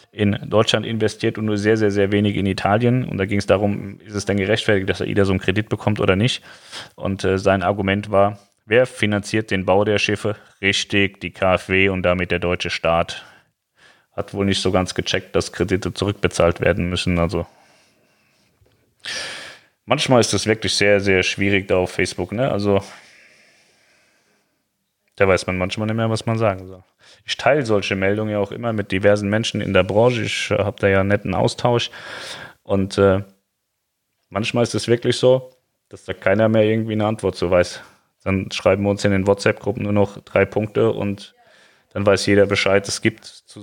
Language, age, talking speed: German, 30-49, 190 wpm